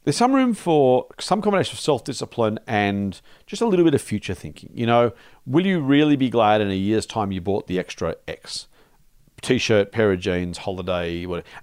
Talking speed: 195 wpm